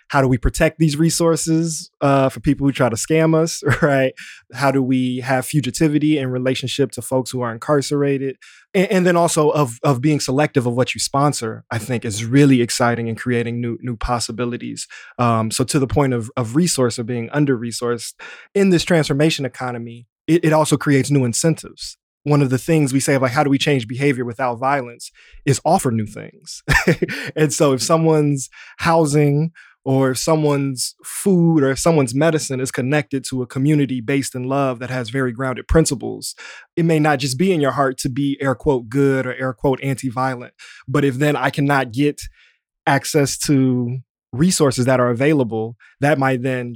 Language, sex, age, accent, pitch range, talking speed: English, male, 20-39, American, 125-150 Hz, 190 wpm